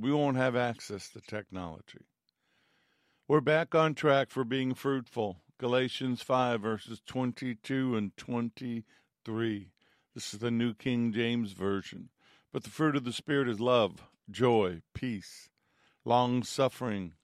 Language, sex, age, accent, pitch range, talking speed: English, male, 60-79, American, 105-135 Hz, 130 wpm